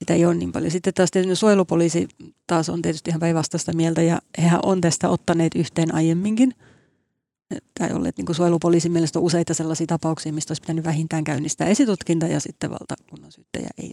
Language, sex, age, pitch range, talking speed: Finnish, female, 30-49, 165-185 Hz, 175 wpm